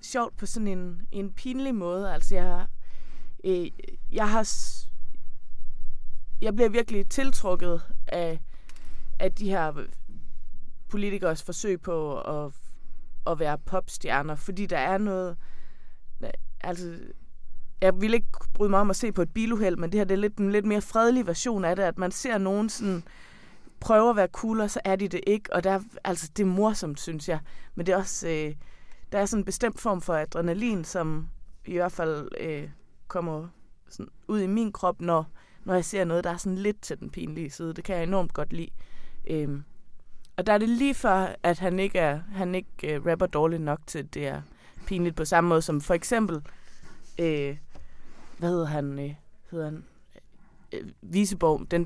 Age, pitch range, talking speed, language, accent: 20-39, 155-200 Hz, 185 wpm, Danish, native